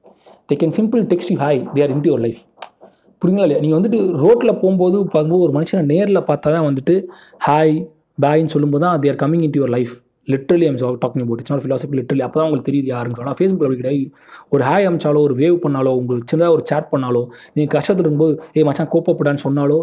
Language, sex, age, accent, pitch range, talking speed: Tamil, male, 30-49, native, 135-180 Hz, 215 wpm